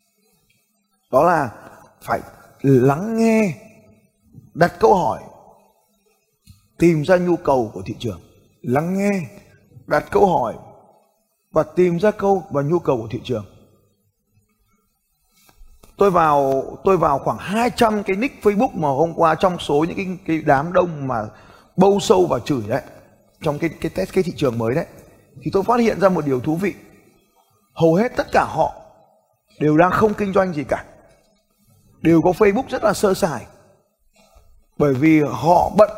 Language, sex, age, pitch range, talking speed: Vietnamese, male, 20-39, 125-195 Hz, 160 wpm